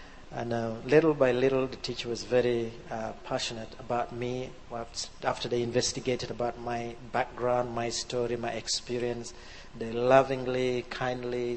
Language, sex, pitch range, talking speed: English, male, 115-135 Hz, 135 wpm